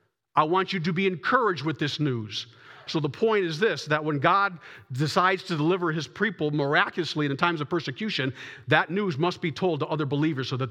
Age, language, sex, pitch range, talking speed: 50-69, English, male, 125-170 Hz, 205 wpm